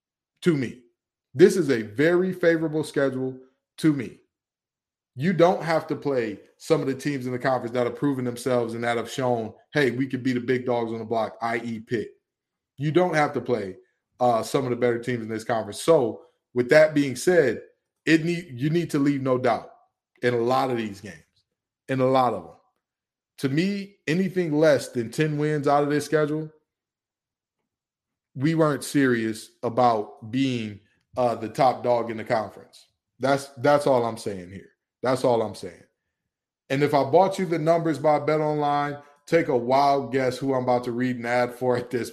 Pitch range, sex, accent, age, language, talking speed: 120-155 Hz, male, American, 20-39, English, 195 wpm